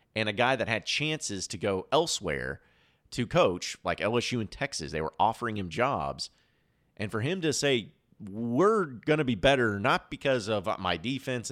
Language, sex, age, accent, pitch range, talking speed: English, male, 30-49, American, 95-125 Hz, 180 wpm